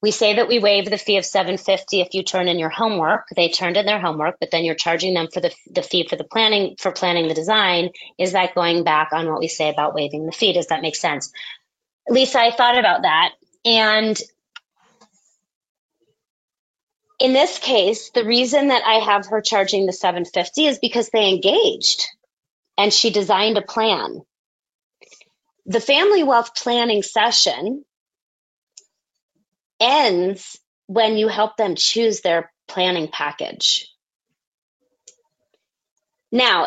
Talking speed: 155 wpm